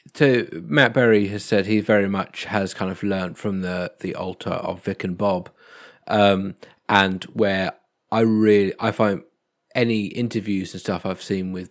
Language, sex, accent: English, male, British